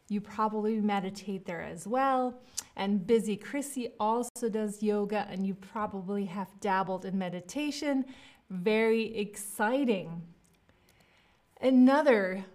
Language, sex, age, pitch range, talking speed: English, female, 30-49, 195-245 Hz, 105 wpm